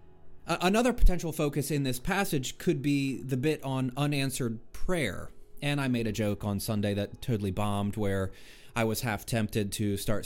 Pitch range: 120-180 Hz